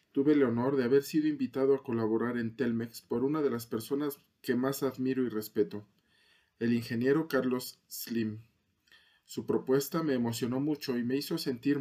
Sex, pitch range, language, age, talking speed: male, 115-140 Hz, Spanish, 40-59, 175 wpm